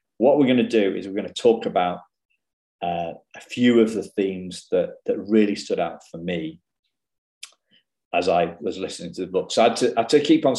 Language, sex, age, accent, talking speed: English, male, 40-59, British, 215 wpm